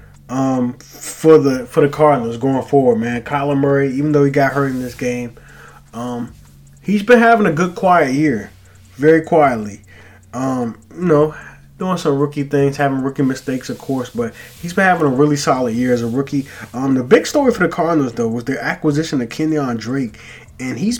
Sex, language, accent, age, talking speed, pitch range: male, English, American, 20-39, 195 wpm, 125-150 Hz